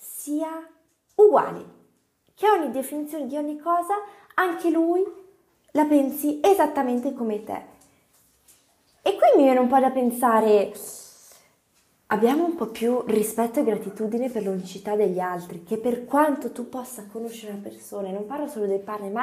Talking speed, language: 145 wpm, Italian